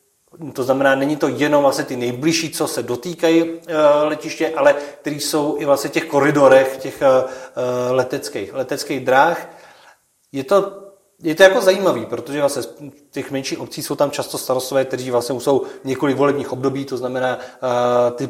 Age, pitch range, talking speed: 40-59, 125-150 Hz, 155 wpm